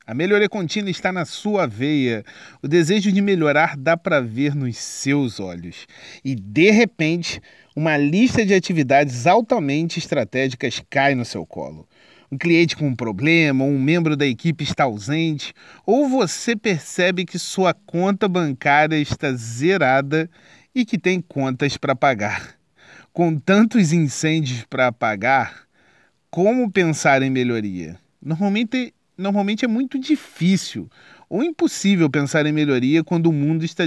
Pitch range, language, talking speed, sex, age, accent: 135-185 Hz, Portuguese, 140 wpm, male, 40-59, Brazilian